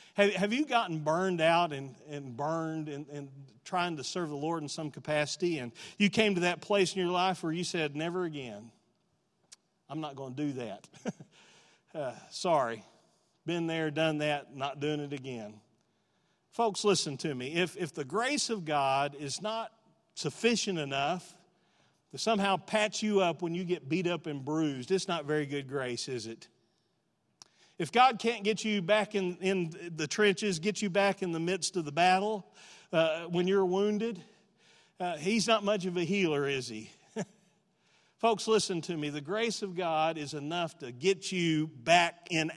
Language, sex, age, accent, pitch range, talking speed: English, male, 40-59, American, 155-205 Hz, 180 wpm